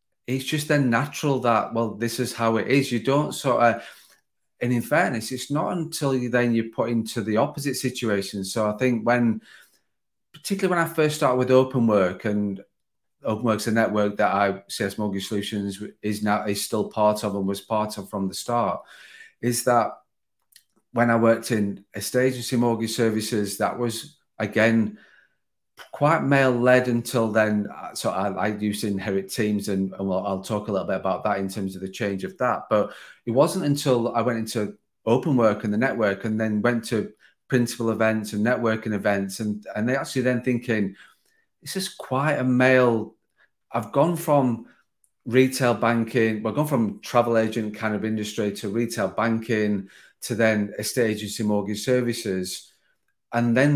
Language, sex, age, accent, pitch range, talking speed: English, male, 40-59, British, 105-125 Hz, 180 wpm